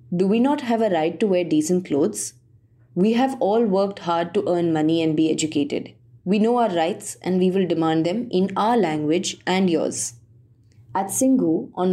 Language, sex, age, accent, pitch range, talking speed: English, female, 20-39, Indian, 160-210 Hz, 190 wpm